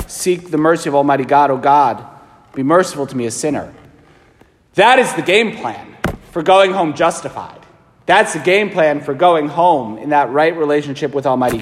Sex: male